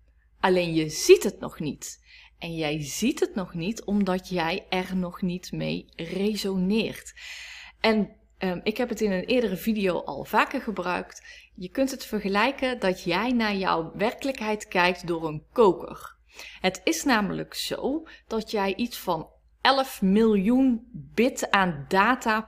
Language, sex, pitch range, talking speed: Dutch, female, 180-235 Hz, 150 wpm